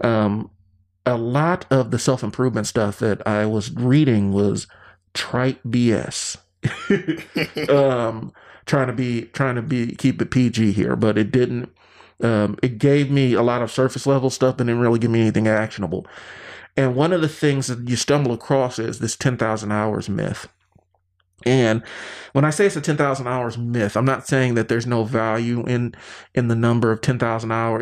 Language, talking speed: English, 175 wpm